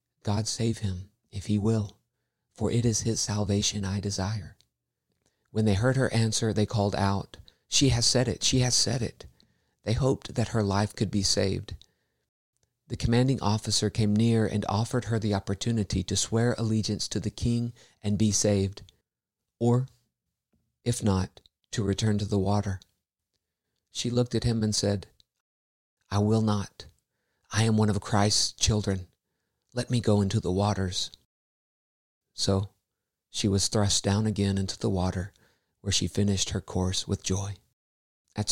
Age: 50-69